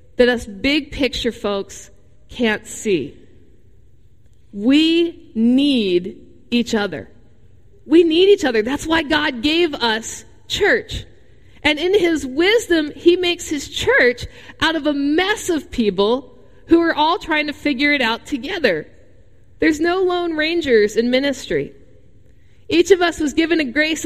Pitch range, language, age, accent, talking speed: 245-335 Hz, English, 50-69, American, 140 wpm